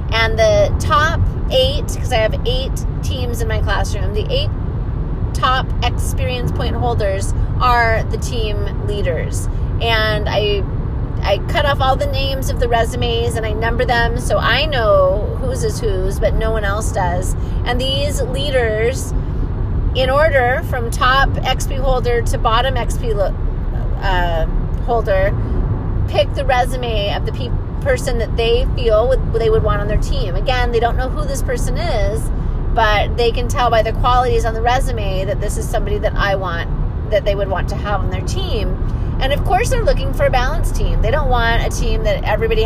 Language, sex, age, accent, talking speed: English, female, 30-49, American, 185 wpm